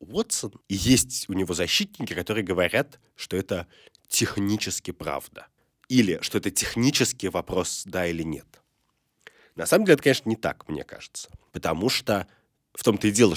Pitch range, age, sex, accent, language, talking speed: 85-125 Hz, 30-49, male, native, Russian, 155 wpm